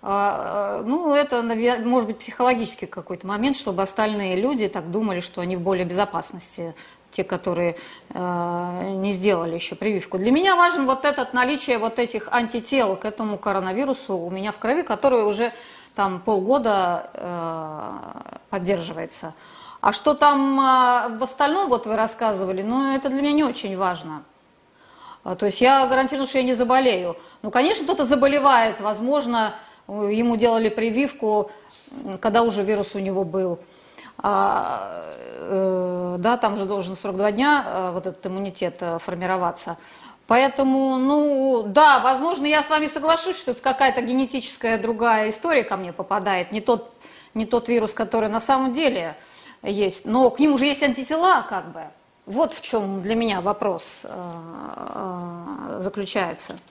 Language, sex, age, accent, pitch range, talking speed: Russian, female, 30-49, native, 190-265 Hz, 145 wpm